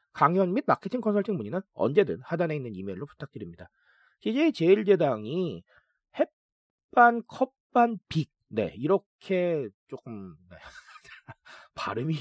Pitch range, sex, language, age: 150-235 Hz, male, Korean, 40-59